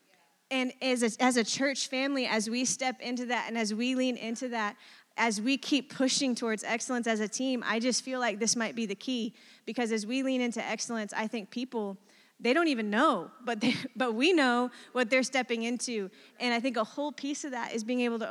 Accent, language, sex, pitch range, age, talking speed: American, English, female, 210-245 Hz, 20-39, 230 wpm